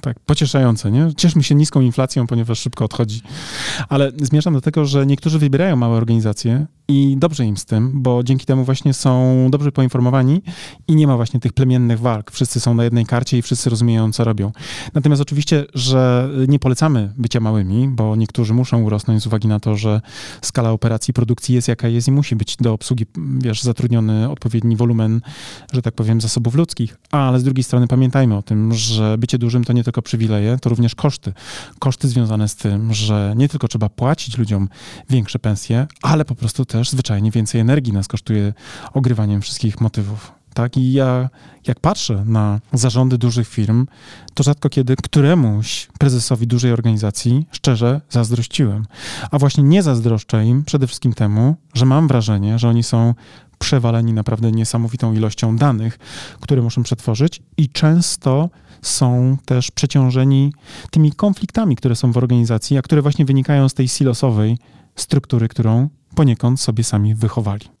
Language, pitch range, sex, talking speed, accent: Polish, 115-140 Hz, male, 170 wpm, native